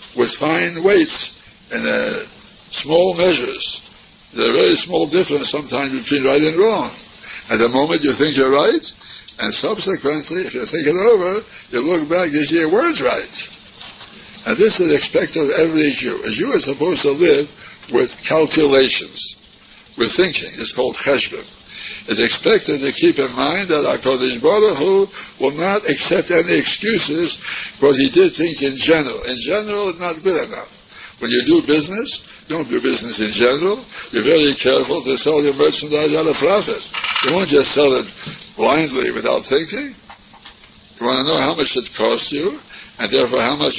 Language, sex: English, male